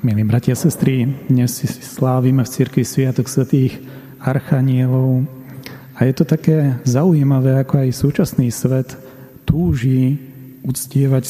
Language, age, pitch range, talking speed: Slovak, 40-59, 120-140 Hz, 120 wpm